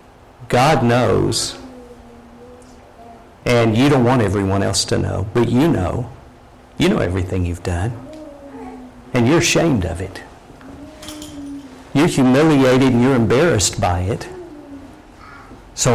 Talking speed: 115 wpm